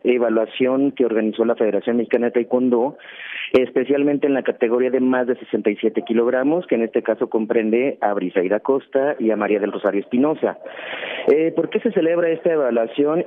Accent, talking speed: Mexican, 165 wpm